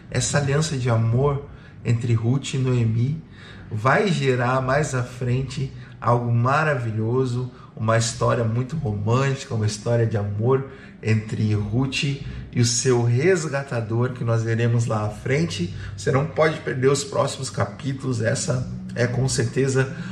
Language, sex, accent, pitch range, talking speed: Portuguese, male, Brazilian, 115-140 Hz, 135 wpm